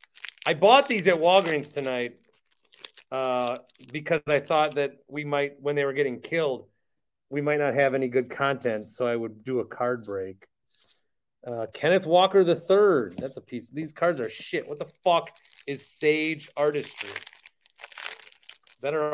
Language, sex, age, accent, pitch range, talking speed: English, male, 30-49, American, 120-175 Hz, 155 wpm